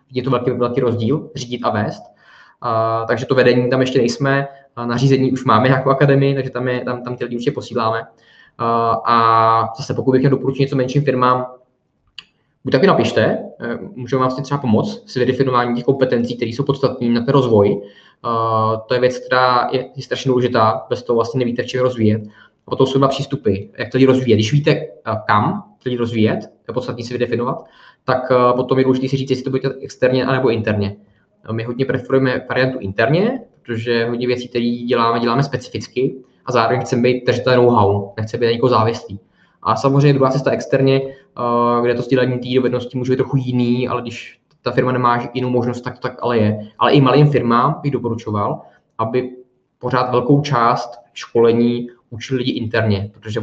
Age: 20-39